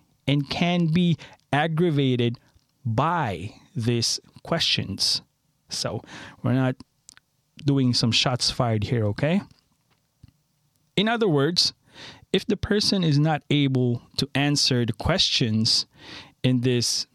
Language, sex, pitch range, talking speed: English, male, 125-160 Hz, 110 wpm